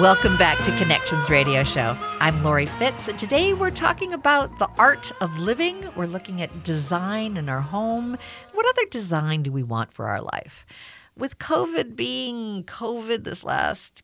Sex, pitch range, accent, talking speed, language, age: female, 155-235 Hz, American, 170 wpm, English, 50-69